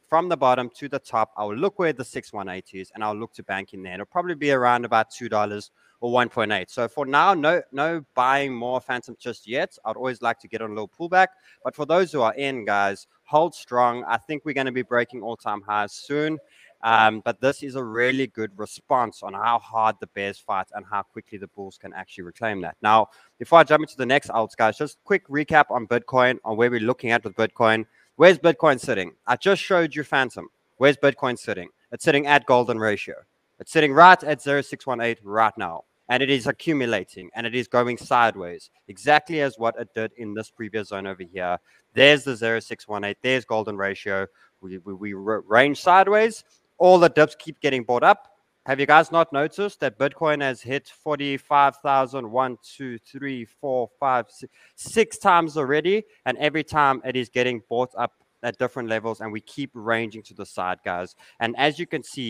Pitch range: 110-145 Hz